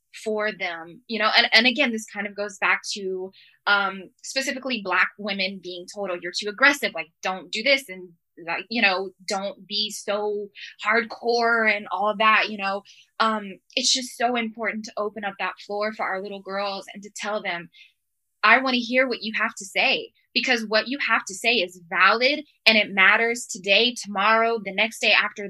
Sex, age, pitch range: female, 10-29, 195-235 Hz